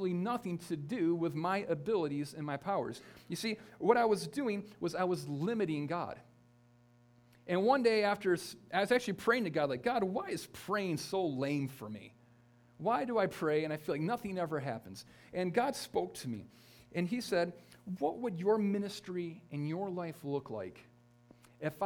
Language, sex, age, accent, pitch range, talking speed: English, male, 40-59, American, 120-180 Hz, 185 wpm